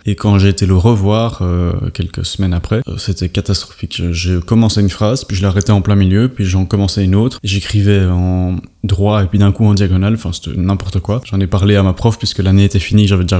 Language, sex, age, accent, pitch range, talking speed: French, male, 20-39, French, 90-110 Hz, 240 wpm